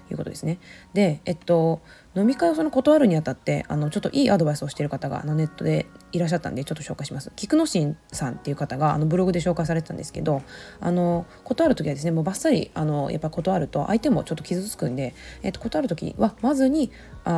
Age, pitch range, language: 20-39, 155-205 Hz, Japanese